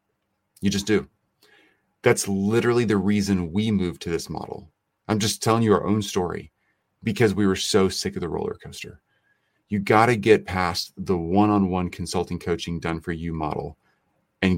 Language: English